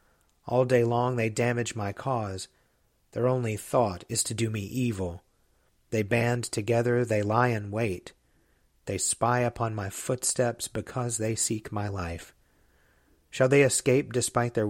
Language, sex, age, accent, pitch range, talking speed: English, male, 40-59, American, 105-125 Hz, 150 wpm